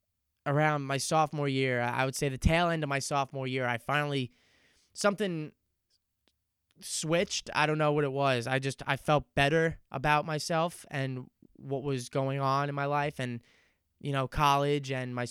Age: 20-39